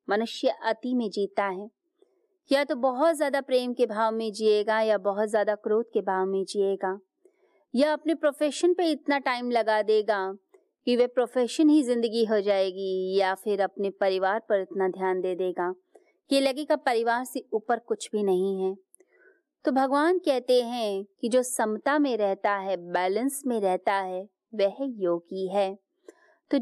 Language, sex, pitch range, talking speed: Hindi, female, 195-300 Hz, 165 wpm